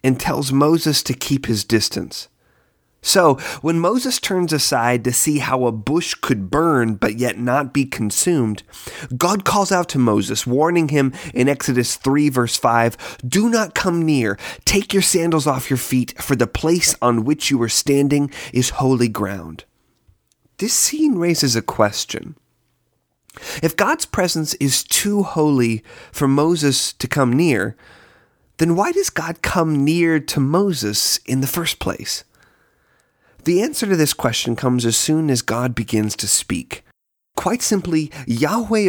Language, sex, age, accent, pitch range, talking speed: English, male, 30-49, American, 120-165 Hz, 155 wpm